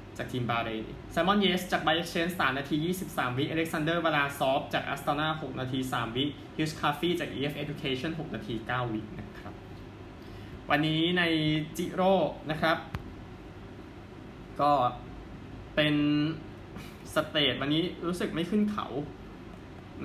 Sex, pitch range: male, 125-165 Hz